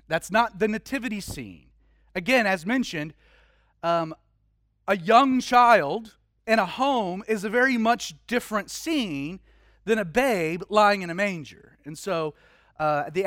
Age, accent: 30-49, American